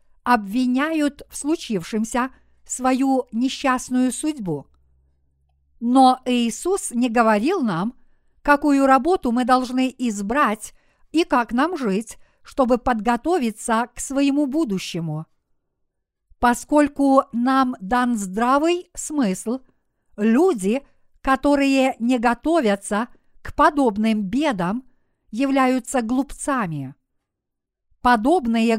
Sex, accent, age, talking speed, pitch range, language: female, native, 50-69, 85 wpm, 225-275 Hz, Russian